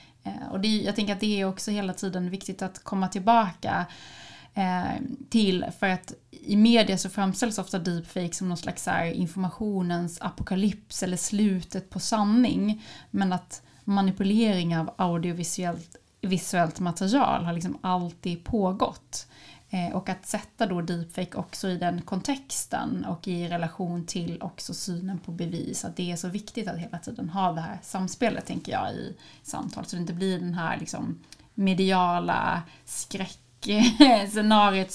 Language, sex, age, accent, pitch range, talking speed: Swedish, female, 30-49, native, 175-205 Hz, 145 wpm